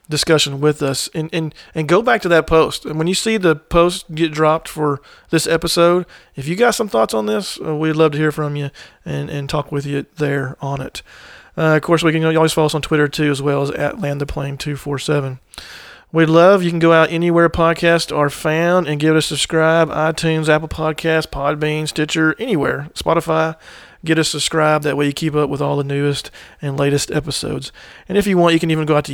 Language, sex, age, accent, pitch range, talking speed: English, male, 40-59, American, 145-165 Hz, 230 wpm